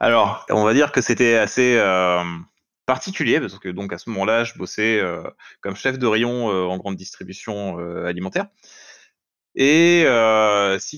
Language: French